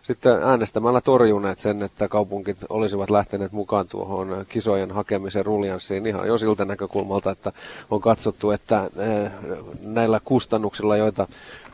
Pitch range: 100-110 Hz